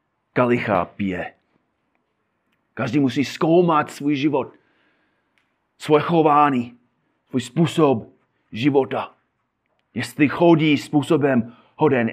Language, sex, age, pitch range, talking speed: Czech, male, 30-49, 120-155 Hz, 75 wpm